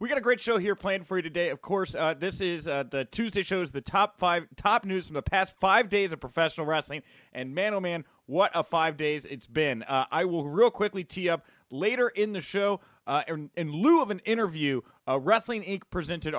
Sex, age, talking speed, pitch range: male, 30-49, 230 wpm, 155-200 Hz